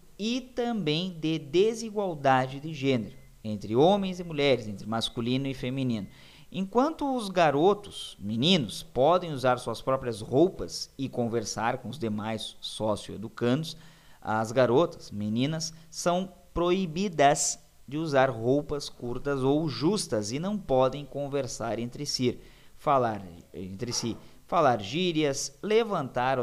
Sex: male